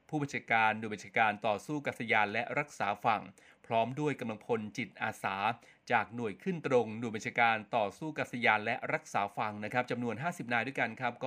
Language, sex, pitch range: Thai, male, 110-135 Hz